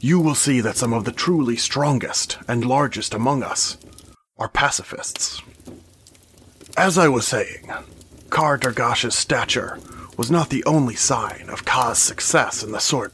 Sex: male